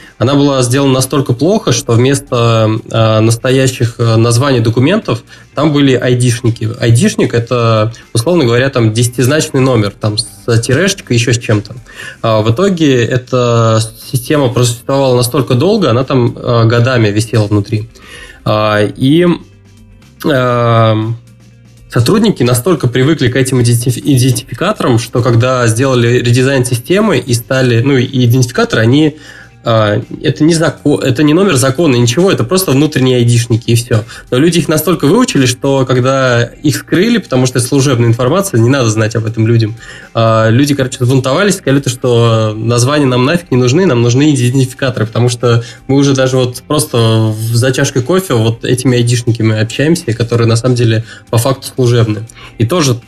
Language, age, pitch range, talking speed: Russian, 20-39, 115-135 Hz, 145 wpm